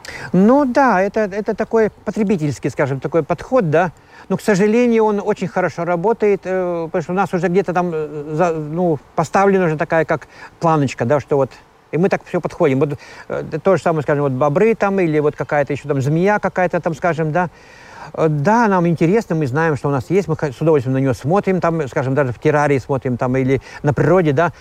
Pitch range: 140-185 Hz